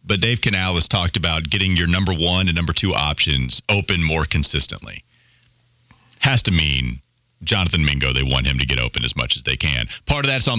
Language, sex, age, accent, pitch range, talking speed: English, male, 30-49, American, 95-130 Hz, 210 wpm